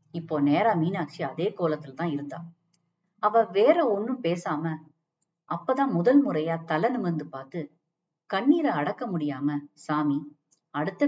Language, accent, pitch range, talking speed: Tamil, native, 150-195 Hz, 115 wpm